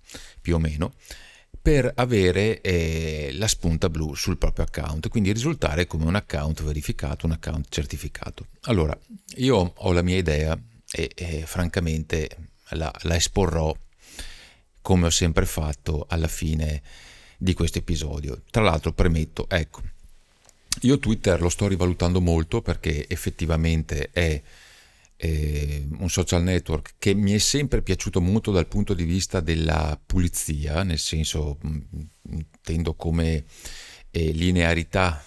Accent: native